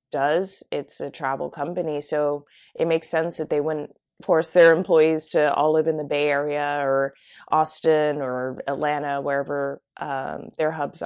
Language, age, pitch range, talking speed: English, 20-39, 155-190 Hz, 165 wpm